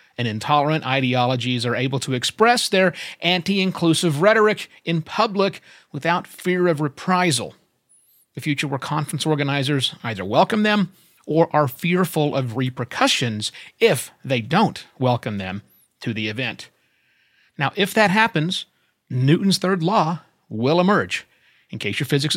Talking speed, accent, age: 135 wpm, American, 40-59